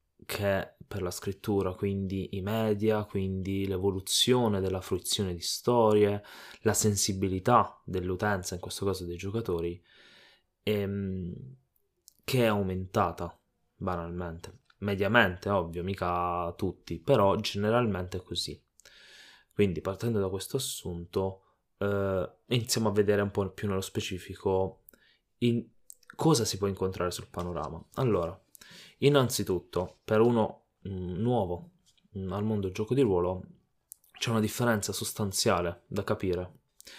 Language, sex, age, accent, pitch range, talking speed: Italian, male, 20-39, native, 95-110 Hz, 115 wpm